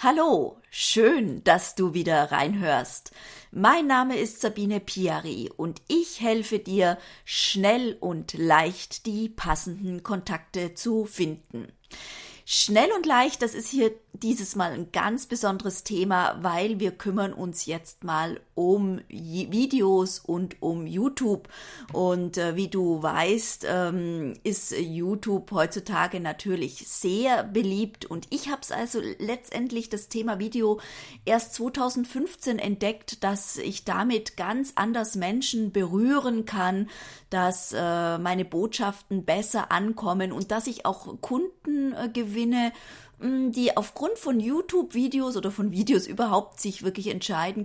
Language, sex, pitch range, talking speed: German, female, 180-225 Hz, 125 wpm